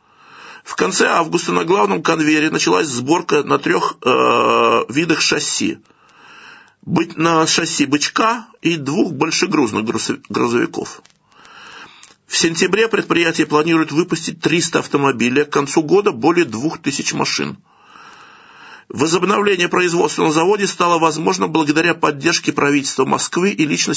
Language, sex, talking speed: Russian, male, 115 wpm